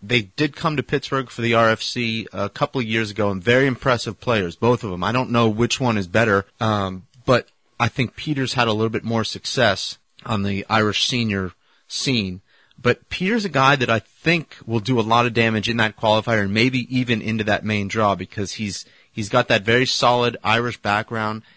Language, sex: English, male